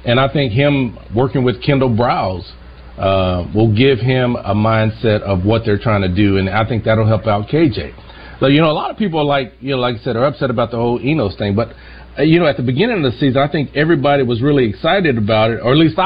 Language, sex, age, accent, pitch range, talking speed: English, male, 40-59, American, 100-135 Hz, 260 wpm